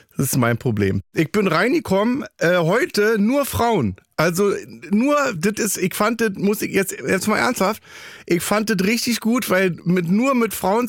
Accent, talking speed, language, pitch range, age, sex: German, 185 wpm, German, 145-205 Hz, 40-59, male